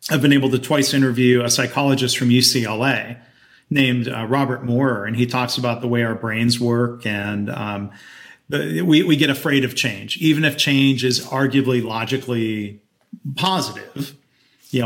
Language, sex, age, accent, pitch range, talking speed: English, male, 40-59, American, 120-140 Hz, 160 wpm